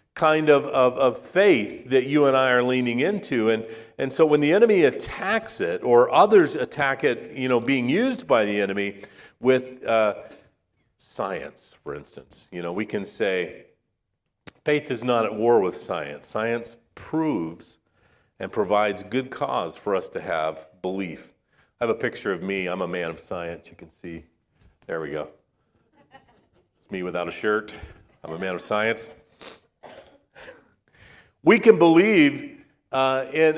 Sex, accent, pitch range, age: male, American, 115-150 Hz, 40-59